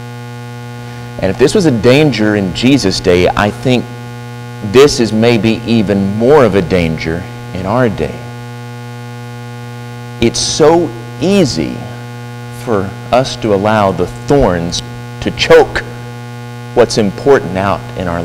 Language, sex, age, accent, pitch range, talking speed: English, male, 40-59, American, 105-120 Hz, 125 wpm